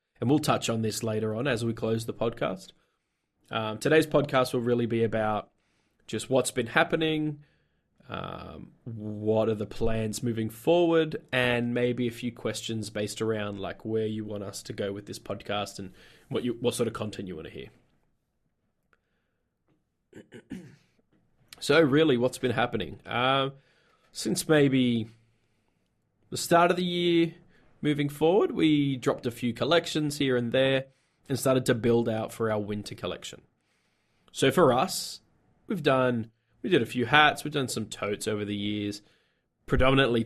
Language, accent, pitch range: English, Australian, 110-135 Hz